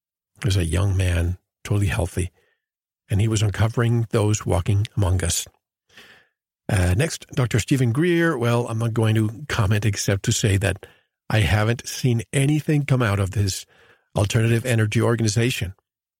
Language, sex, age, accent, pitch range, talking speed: English, male, 50-69, American, 100-125 Hz, 150 wpm